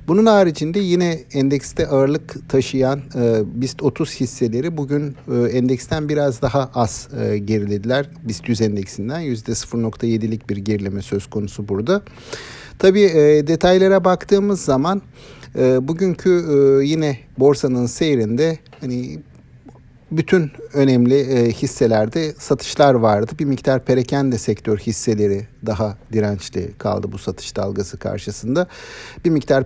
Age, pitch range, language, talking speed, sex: 50-69, 110-140 Hz, Turkish, 105 wpm, male